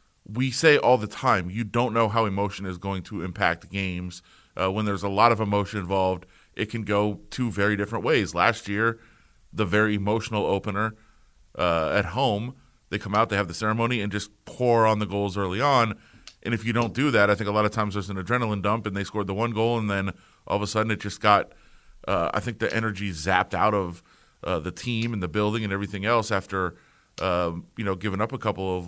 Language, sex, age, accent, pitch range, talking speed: English, male, 30-49, American, 100-115 Hz, 230 wpm